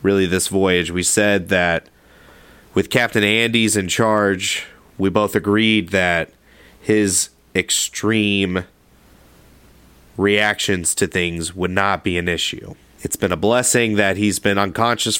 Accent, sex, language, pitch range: American, male, English, 90-105 Hz